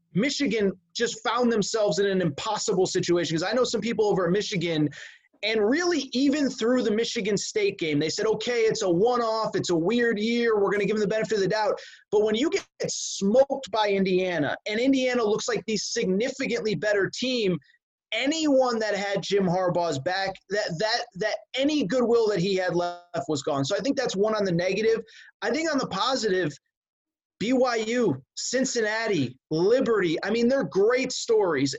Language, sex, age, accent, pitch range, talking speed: English, male, 30-49, American, 195-245 Hz, 185 wpm